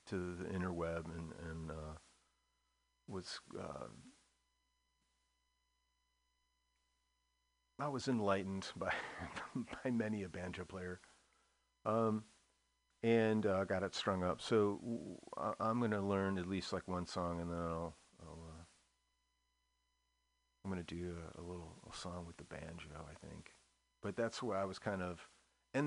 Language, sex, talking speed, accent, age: English, male, 140 wpm, American, 40-59